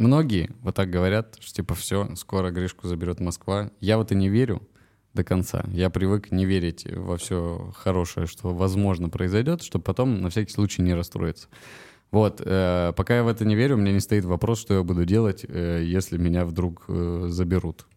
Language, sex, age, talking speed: Russian, male, 20-39, 190 wpm